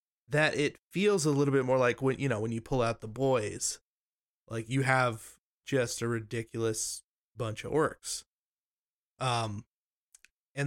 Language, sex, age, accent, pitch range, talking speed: English, male, 20-39, American, 115-140 Hz, 155 wpm